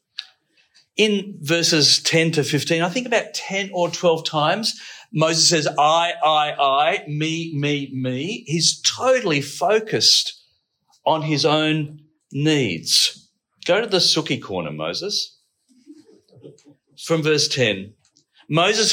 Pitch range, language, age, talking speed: 125-195 Hz, English, 50-69, 115 wpm